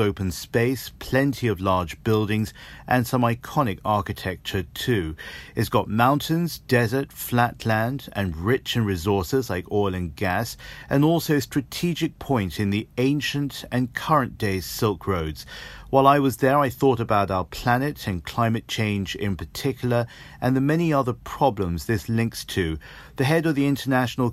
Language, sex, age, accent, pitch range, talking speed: English, male, 40-59, British, 100-130 Hz, 160 wpm